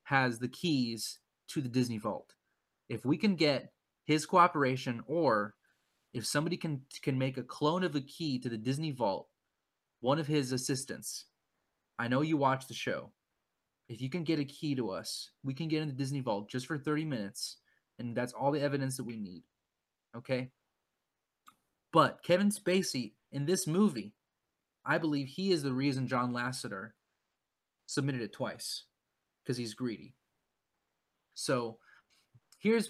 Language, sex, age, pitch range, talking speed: English, male, 20-39, 125-150 Hz, 160 wpm